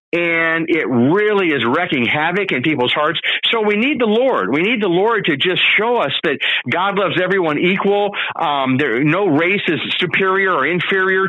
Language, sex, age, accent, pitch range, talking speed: English, male, 50-69, American, 155-210 Hz, 185 wpm